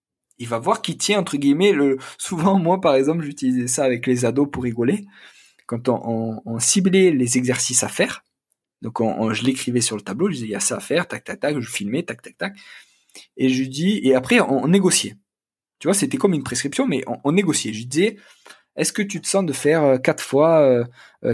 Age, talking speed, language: 20-39, 235 wpm, French